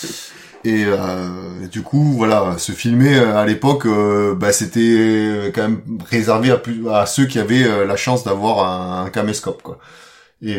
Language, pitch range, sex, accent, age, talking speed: French, 95-115 Hz, male, French, 30-49, 170 wpm